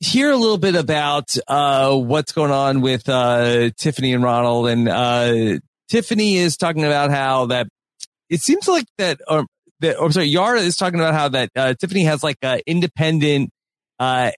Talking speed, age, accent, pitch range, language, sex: 180 wpm, 30-49, American, 125-165 Hz, English, male